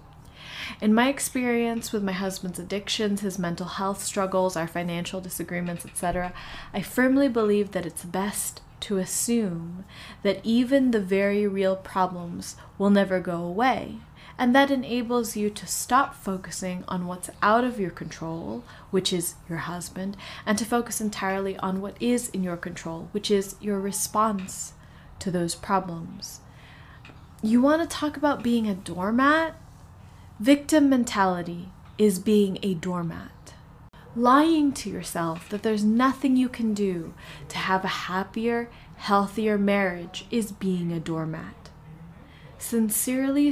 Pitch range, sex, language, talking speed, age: 180-230 Hz, female, English, 140 wpm, 20-39